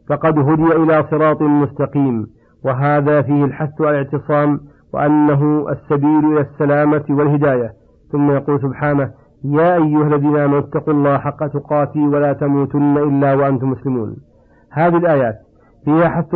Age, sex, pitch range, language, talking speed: 50-69, male, 140-160 Hz, Arabic, 125 wpm